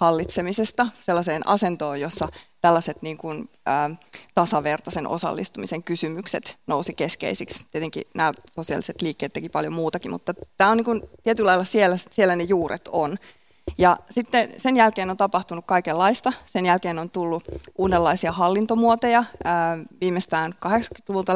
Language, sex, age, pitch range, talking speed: Finnish, female, 20-39, 165-200 Hz, 135 wpm